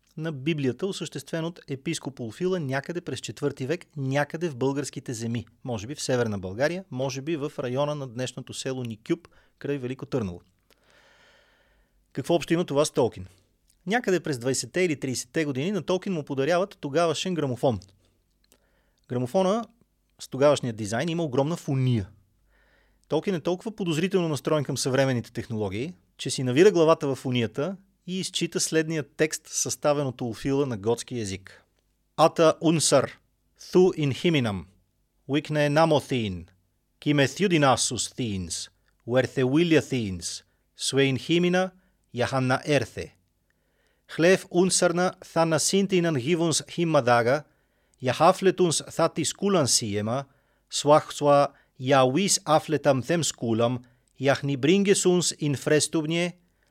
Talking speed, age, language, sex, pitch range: 130 wpm, 30-49, Bulgarian, male, 125-165 Hz